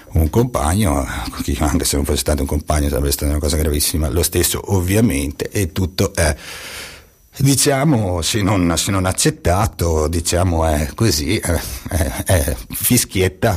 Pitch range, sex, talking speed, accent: 80-95 Hz, male, 140 wpm, native